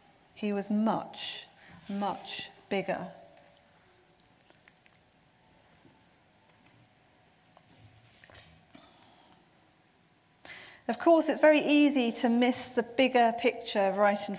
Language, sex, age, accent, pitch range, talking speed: English, female, 40-59, British, 205-250 Hz, 70 wpm